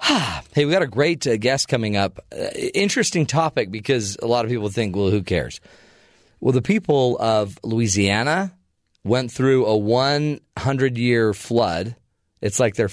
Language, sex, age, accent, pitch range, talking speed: English, male, 40-59, American, 100-135 Hz, 165 wpm